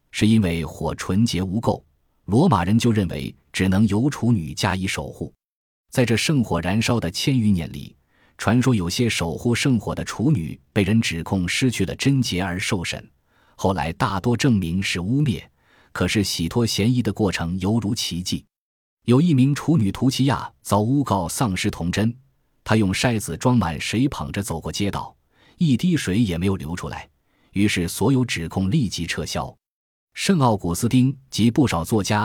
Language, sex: Chinese, male